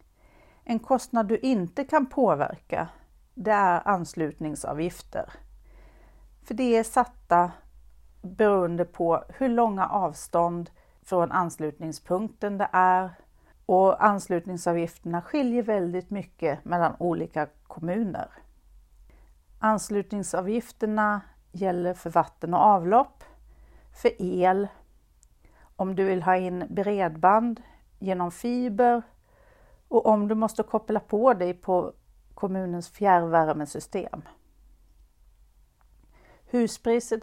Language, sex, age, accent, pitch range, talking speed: Swedish, female, 40-59, native, 170-220 Hz, 90 wpm